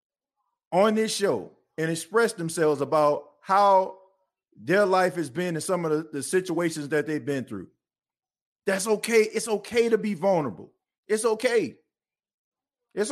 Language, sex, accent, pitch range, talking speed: English, male, American, 155-215 Hz, 145 wpm